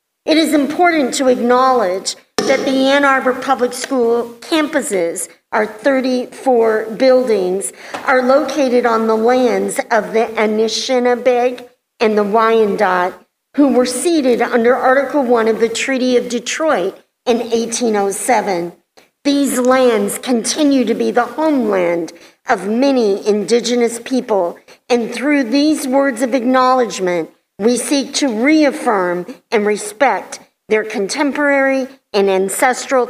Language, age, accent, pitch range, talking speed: English, 50-69, American, 210-265 Hz, 120 wpm